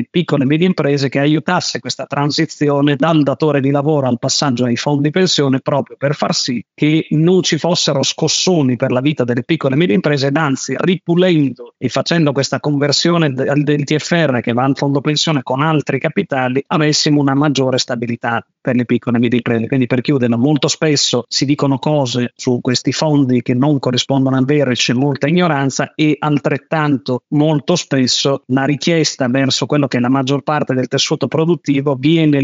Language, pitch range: Italian, 125-150 Hz